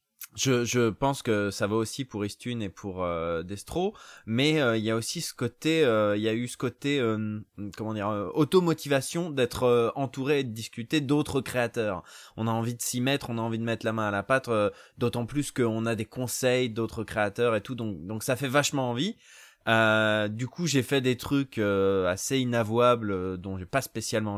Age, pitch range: 20-39, 100-125 Hz